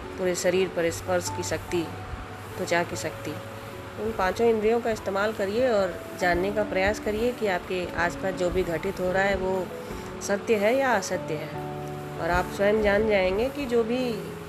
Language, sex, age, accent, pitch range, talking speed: Hindi, female, 30-49, native, 165-200 Hz, 180 wpm